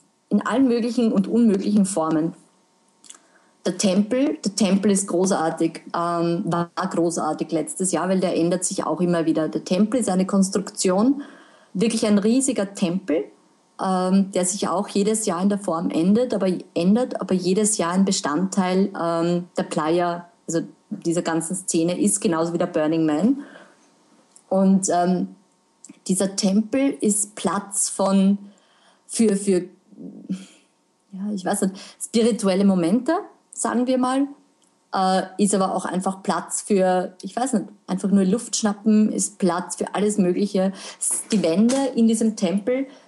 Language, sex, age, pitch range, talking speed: German, female, 20-39, 185-225 Hz, 145 wpm